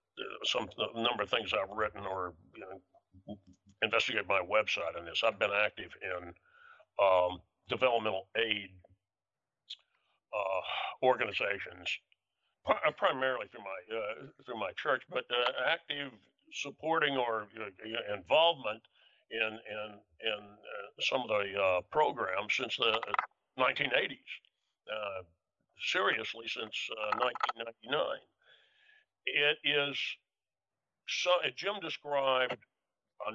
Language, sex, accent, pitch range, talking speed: English, male, American, 105-145 Hz, 115 wpm